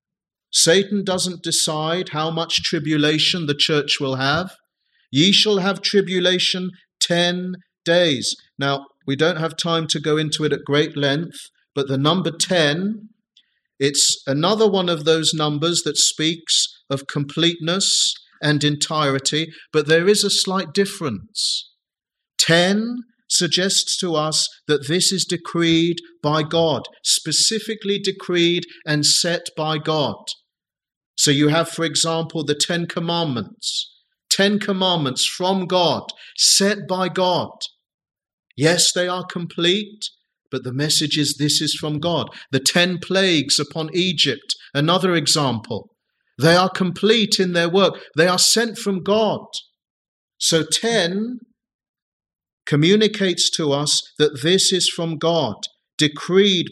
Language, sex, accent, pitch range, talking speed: English, male, British, 150-190 Hz, 130 wpm